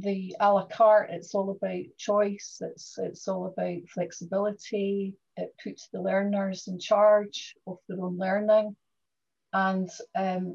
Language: English